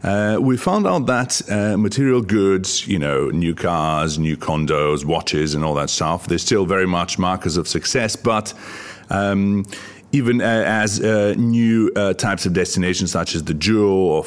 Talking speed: 175 wpm